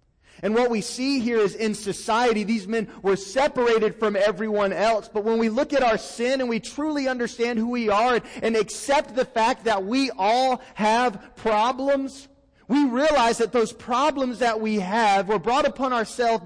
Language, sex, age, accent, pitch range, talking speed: English, male, 30-49, American, 195-230 Hz, 185 wpm